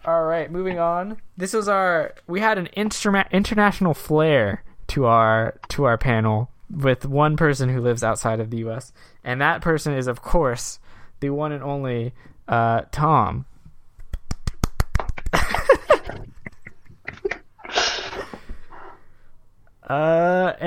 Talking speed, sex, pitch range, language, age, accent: 115 wpm, male, 120-165 Hz, English, 20-39, American